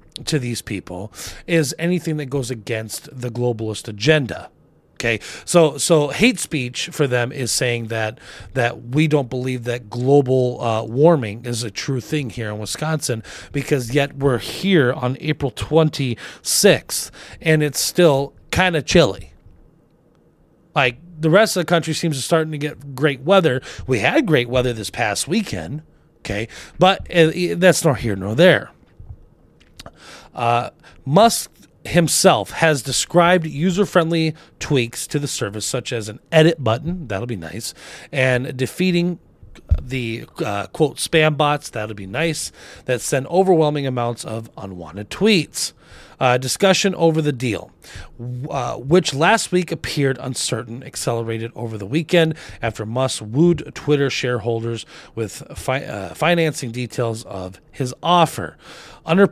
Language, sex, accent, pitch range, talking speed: English, male, American, 115-160 Hz, 145 wpm